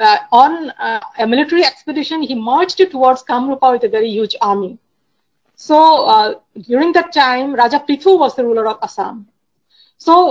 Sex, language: female, English